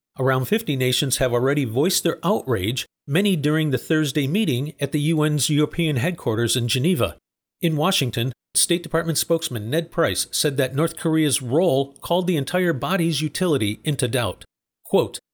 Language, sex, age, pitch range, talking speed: English, male, 50-69, 130-165 Hz, 155 wpm